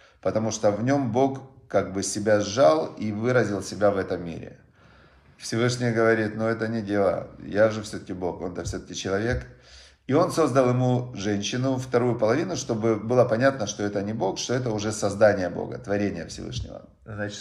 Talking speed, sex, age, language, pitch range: 170 wpm, male, 40-59, Russian, 105-135 Hz